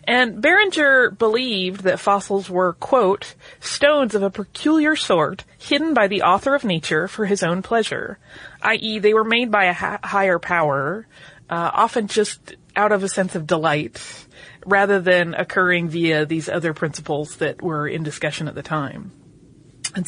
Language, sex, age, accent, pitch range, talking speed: English, female, 30-49, American, 165-220 Hz, 165 wpm